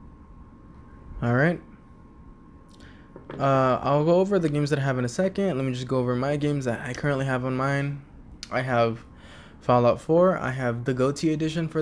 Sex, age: male, 20-39